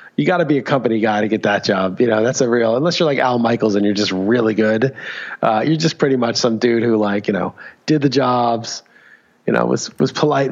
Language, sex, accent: English, male, American